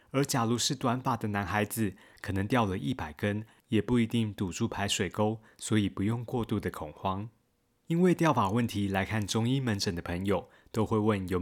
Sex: male